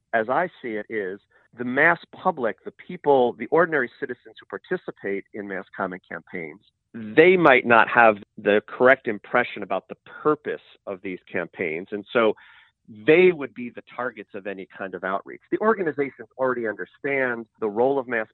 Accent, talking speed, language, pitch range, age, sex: American, 170 wpm, English, 100-130 Hz, 40-59, male